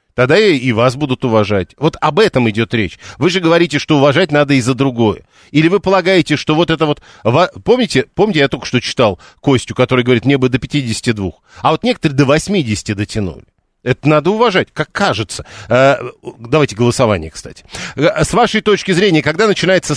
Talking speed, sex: 175 wpm, male